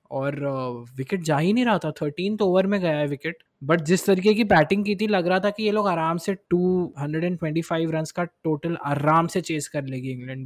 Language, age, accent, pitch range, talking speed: Hindi, 20-39, native, 140-170 Hz, 240 wpm